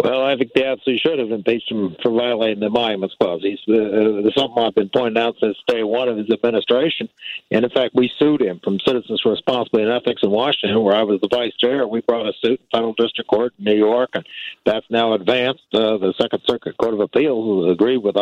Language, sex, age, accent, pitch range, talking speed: English, male, 60-79, American, 115-140 Hz, 240 wpm